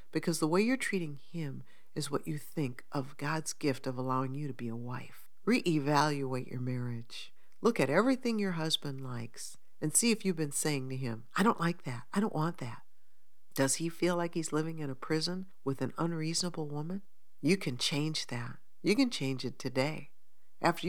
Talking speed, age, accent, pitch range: 195 wpm, 60-79, American, 130-170 Hz